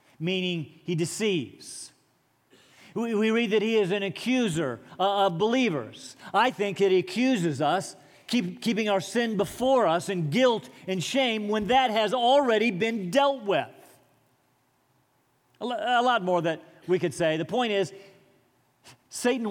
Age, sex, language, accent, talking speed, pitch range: 40-59, male, English, American, 140 wpm, 175-235 Hz